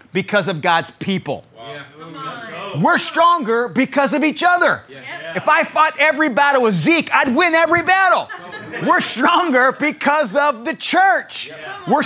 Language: English